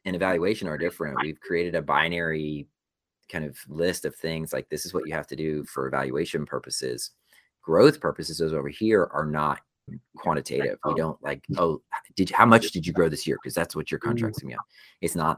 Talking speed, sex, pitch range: 210 wpm, male, 75-95 Hz